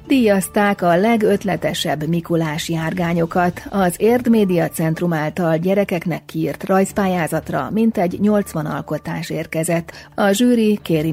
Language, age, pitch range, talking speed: Hungarian, 40-59, 165-205 Hz, 100 wpm